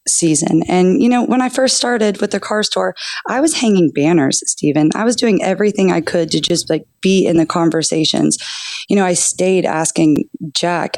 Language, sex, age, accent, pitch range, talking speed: English, female, 20-39, American, 160-195 Hz, 195 wpm